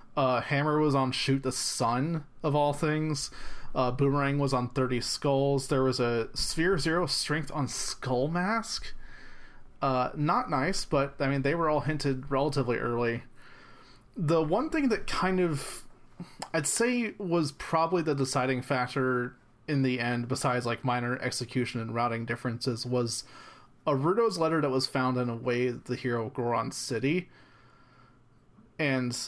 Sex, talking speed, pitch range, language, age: male, 160 wpm, 125-145 Hz, English, 30-49